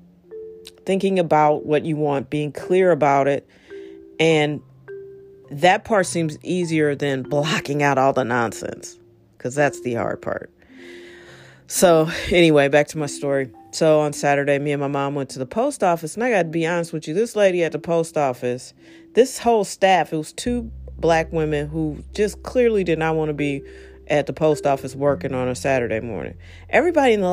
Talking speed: 185 wpm